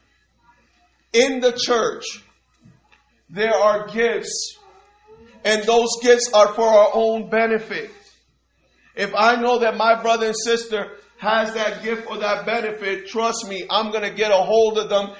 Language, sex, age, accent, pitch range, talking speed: English, male, 40-59, American, 190-230 Hz, 150 wpm